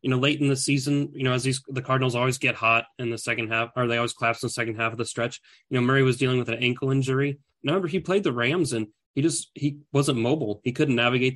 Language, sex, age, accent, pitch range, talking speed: English, male, 30-49, American, 115-135 Hz, 280 wpm